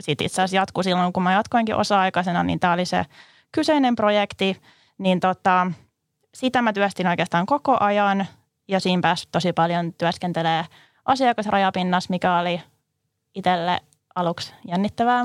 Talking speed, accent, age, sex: 135 wpm, native, 20-39, female